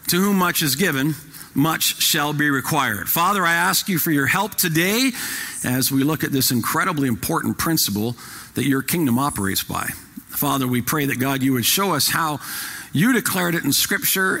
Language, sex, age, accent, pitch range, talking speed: English, male, 50-69, American, 125-180 Hz, 185 wpm